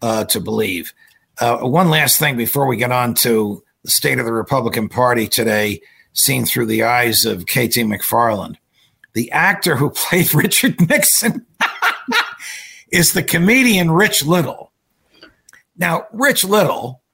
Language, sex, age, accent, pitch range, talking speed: English, male, 50-69, American, 120-165 Hz, 140 wpm